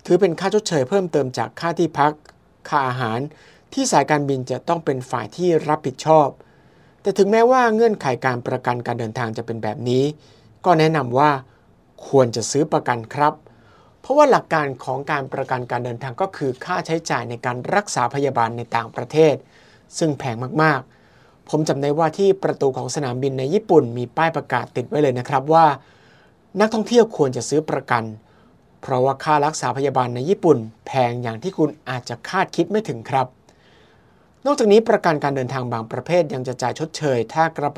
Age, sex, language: 60-79, male, Thai